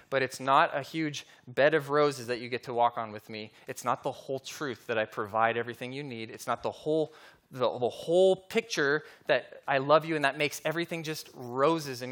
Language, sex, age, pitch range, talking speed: English, male, 20-39, 135-175 Hz, 230 wpm